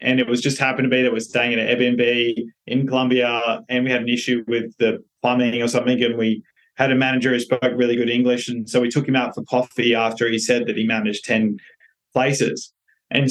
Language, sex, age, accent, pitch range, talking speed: English, male, 20-39, Australian, 115-125 Hz, 235 wpm